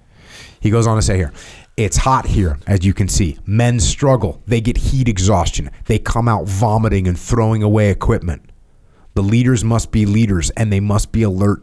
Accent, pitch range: American, 85-110 Hz